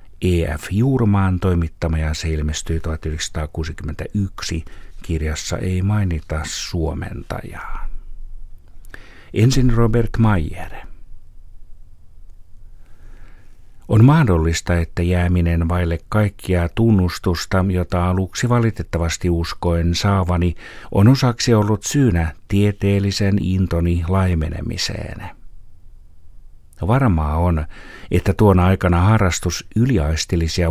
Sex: male